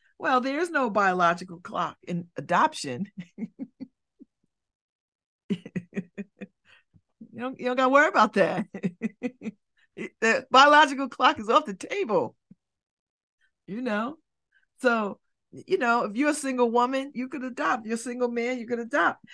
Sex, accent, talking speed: female, American, 135 wpm